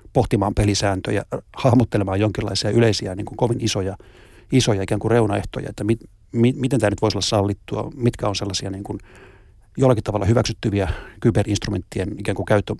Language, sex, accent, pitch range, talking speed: Finnish, male, native, 100-120 Hz, 160 wpm